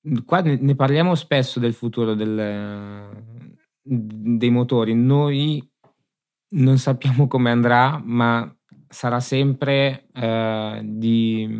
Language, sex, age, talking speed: Italian, male, 20-39, 90 wpm